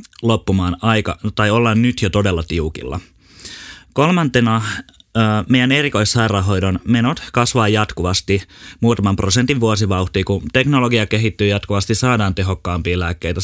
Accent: native